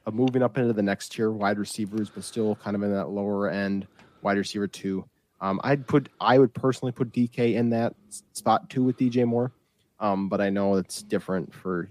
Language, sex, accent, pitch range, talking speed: English, male, American, 110-150 Hz, 205 wpm